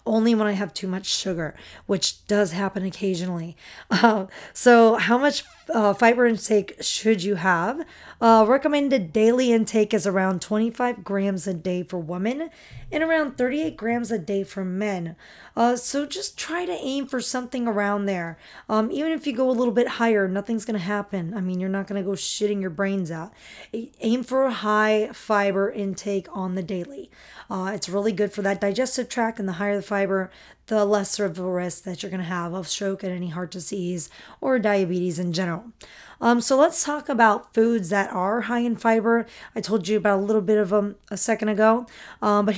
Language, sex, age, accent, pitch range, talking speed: English, female, 20-39, American, 195-235 Hz, 200 wpm